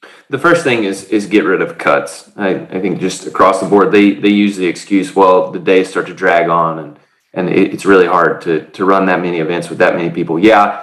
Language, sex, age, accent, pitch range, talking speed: English, male, 20-39, American, 100-125 Hz, 245 wpm